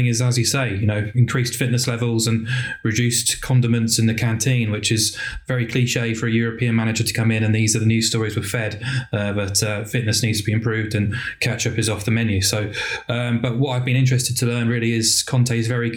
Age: 20-39